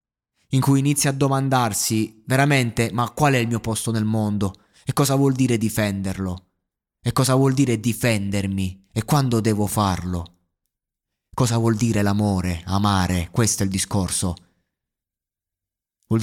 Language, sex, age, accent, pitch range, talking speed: Italian, male, 20-39, native, 100-125 Hz, 140 wpm